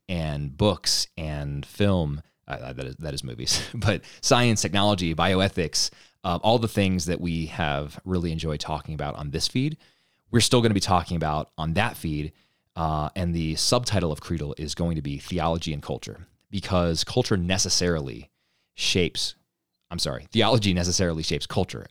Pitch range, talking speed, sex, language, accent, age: 80-100 Hz, 165 wpm, male, English, American, 30-49